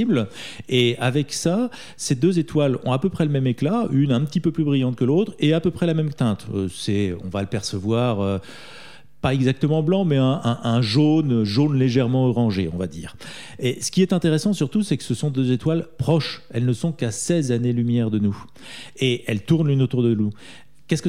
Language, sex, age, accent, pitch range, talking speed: French, male, 40-59, French, 115-155 Hz, 215 wpm